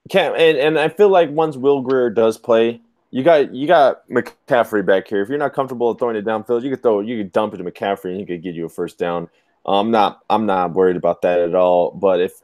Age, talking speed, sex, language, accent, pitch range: 20-39, 255 wpm, male, English, American, 100-145 Hz